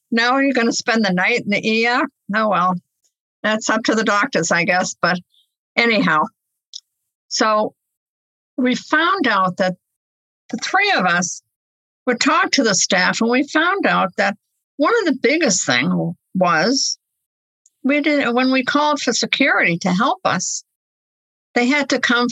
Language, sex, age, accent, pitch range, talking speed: English, female, 60-79, American, 185-250 Hz, 160 wpm